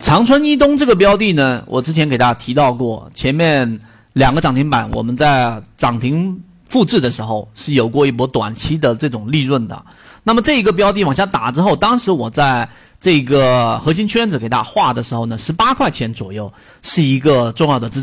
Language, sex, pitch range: Chinese, male, 125-195 Hz